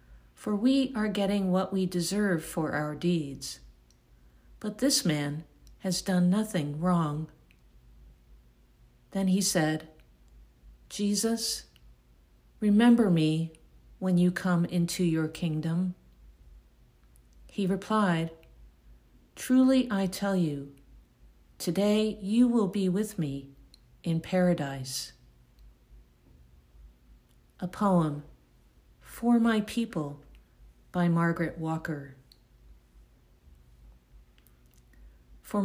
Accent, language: American, English